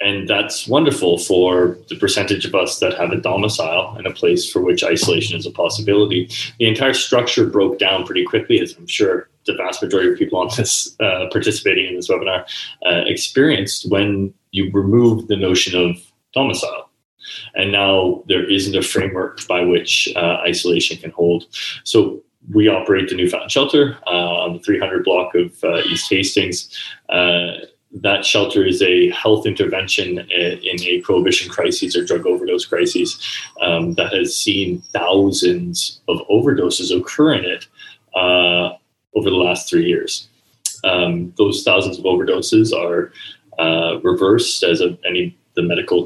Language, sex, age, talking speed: English, male, 20-39, 160 wpm